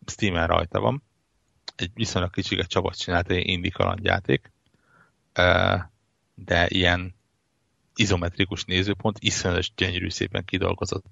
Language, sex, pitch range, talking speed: Hungarian, male, 90-105 Hz, 105 wpm